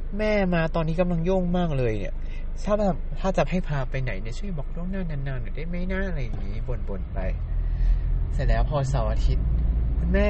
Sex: male